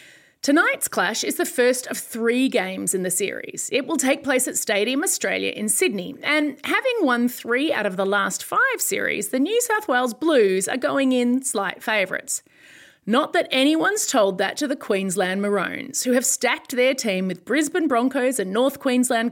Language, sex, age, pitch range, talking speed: English, female, 30-49, 200-300 Hz, 185 wpm